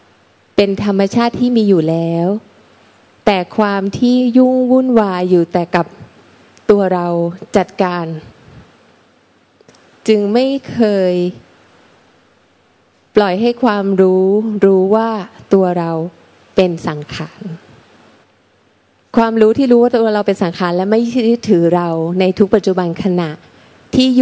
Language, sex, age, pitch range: Thai, female, 20-39, 175-220 Hz